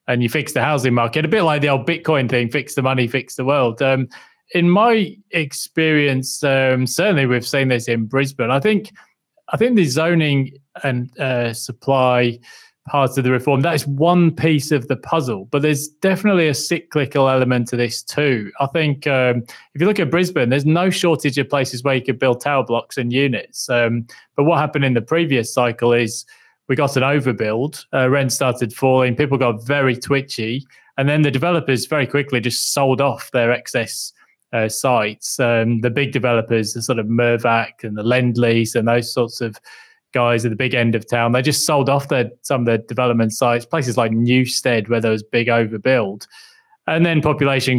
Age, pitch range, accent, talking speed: 20-39, 120-145 Hz, British, 195 wpm